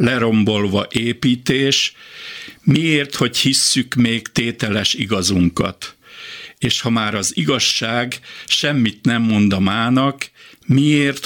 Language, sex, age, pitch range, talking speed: Hungarian, male, 60-79, 115-135 Hz, 100 wpm